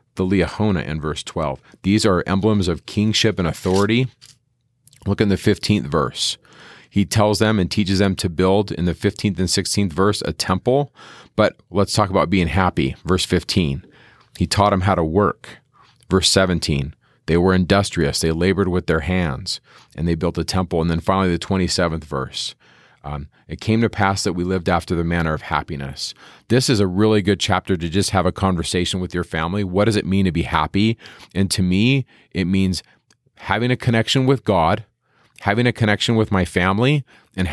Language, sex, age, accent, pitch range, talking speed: English, male, 40-59, American, 85-105 Hz, 190 wpm